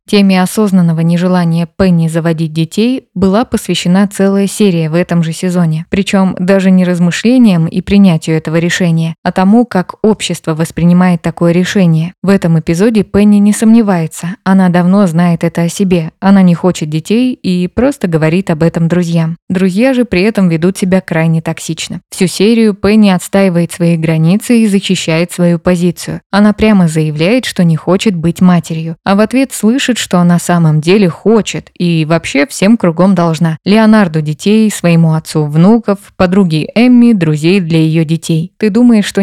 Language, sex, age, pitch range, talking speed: Russian, female, 20-39, 170-200 Hz, 160 wpm